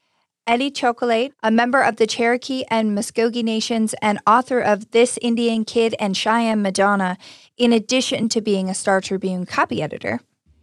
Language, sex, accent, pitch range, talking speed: English, female, American, 200-240 Hz, 160 wpm